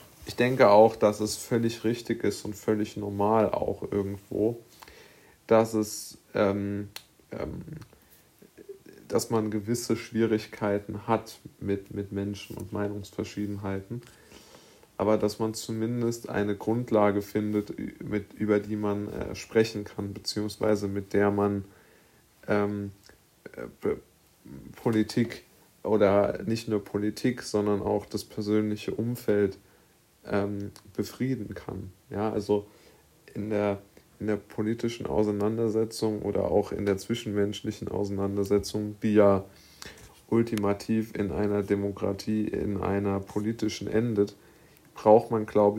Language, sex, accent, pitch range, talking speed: German, male, German, 100-110 Hz, 105 wpm